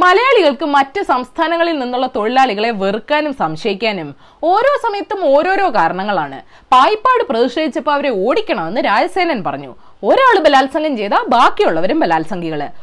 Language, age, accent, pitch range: Malayalam, 20-39, native, 225-360 Hz